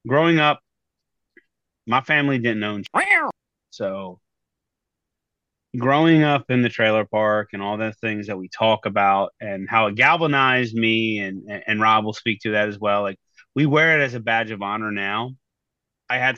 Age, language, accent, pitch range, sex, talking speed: 30-49, English, American, 105-130 Hz, male, 175 wpm